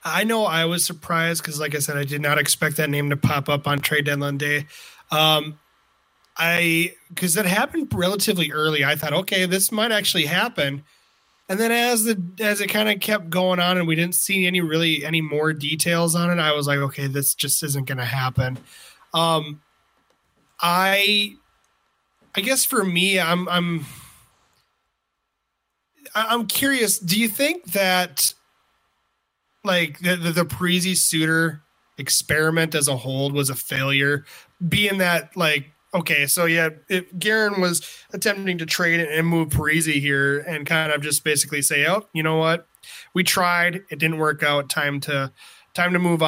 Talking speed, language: 170 wpm, English